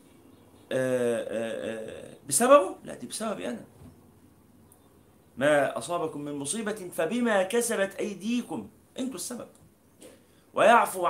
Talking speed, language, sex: 90 wpm, Arabic, male